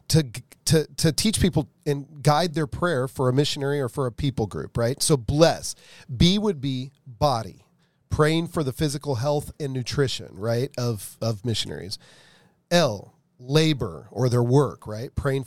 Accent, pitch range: American, 125-155 Hz